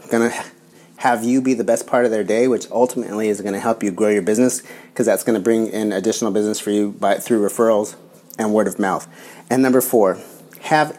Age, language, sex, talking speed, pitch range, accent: 30-49, English, male, 230 wpm, 105-125 Hz, American